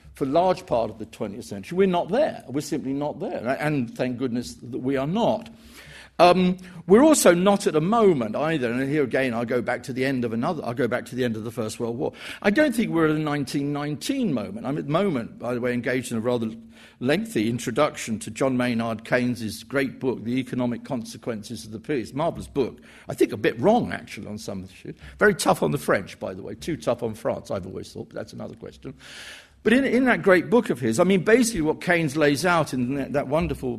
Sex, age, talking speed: male, 50-69, 240 wpm